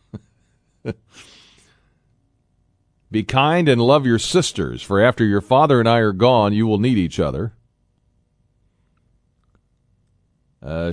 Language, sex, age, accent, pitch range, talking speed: English, male, 40-59, American, 105-130 Hz, 110 wpm